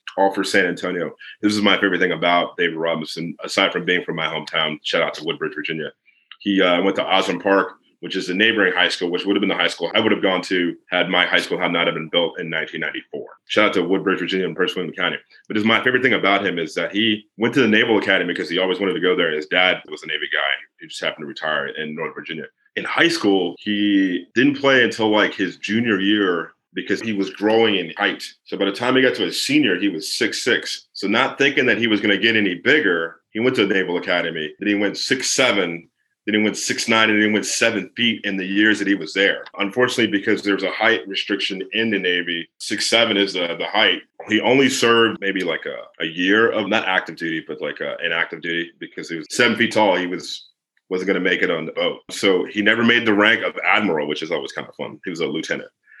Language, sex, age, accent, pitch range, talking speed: English, male, 30-49, American, 95-110 Hz, 250 wpm